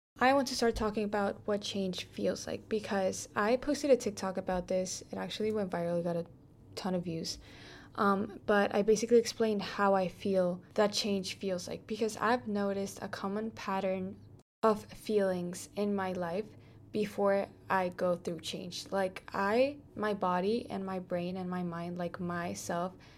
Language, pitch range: English, 180-210 Hz